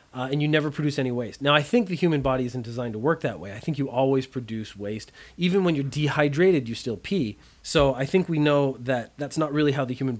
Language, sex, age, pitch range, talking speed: English, male, 30-49, 125-160 Hz, 260 wpm